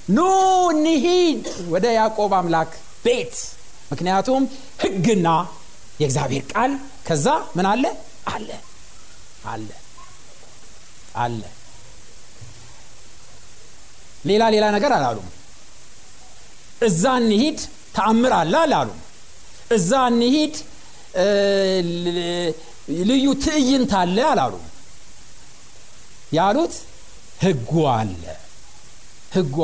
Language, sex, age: Amharic, male, 60-79